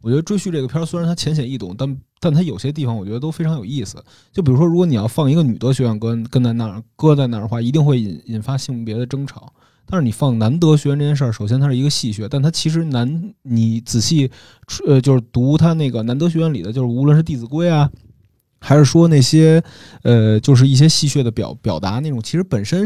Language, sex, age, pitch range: Chinese, male, 20-39, 115-145 Hz